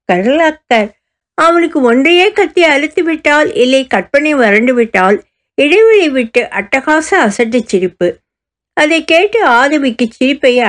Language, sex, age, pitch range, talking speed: Tamil, female, 60-79, 190-300 Hz, 95 wpm